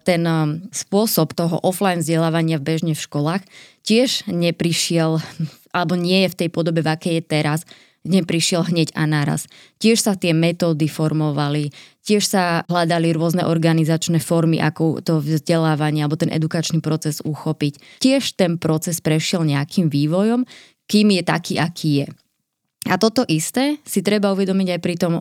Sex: female